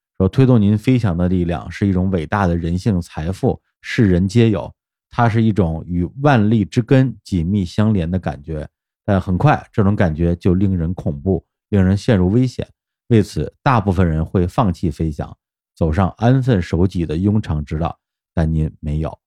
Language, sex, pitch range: Chinese, male, 85-110 Hz